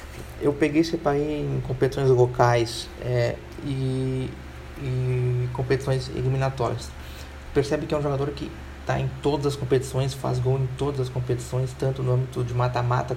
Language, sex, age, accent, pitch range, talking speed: Portuguese, male, 20-39, Brazilian, 115-130 Hz, 150 wpm